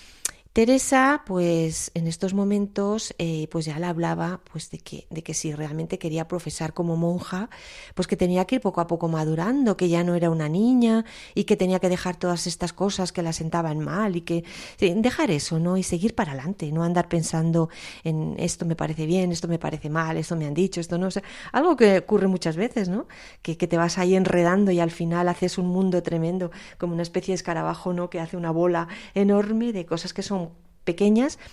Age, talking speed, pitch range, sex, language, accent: 30-49, 215 wpm, 165-195 Hz, female, Spanish, Spanish